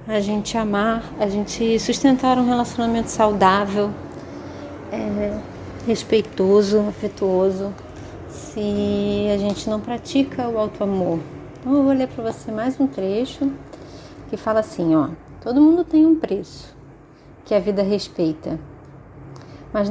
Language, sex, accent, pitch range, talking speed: Portuguese, female, Brazilian, 190-250 Hz, 125 wpm